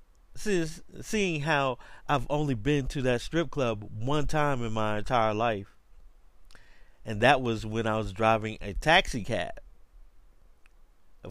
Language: English